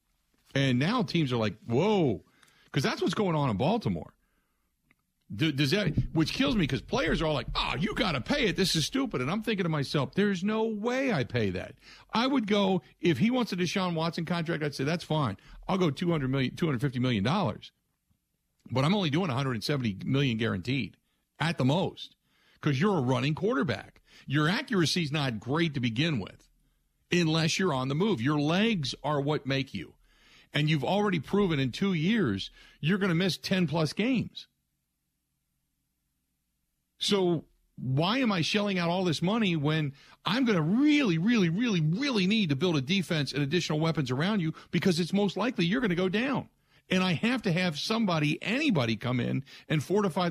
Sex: male